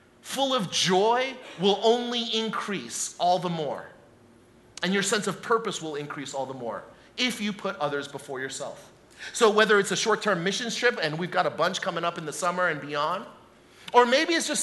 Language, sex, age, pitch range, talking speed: Russian, male, 30-49, 190-245 Hz, 195 wpm